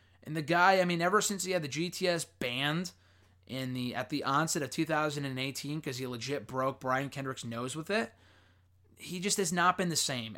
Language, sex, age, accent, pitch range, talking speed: English, male, 30-49, American, 130-195 Hz, 200 wpm